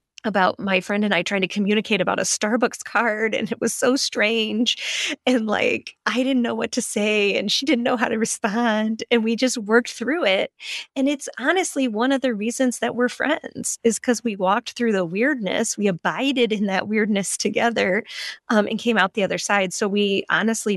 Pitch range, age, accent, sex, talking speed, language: 185-245 Hz, 30-49, American, female, 205 wpm, English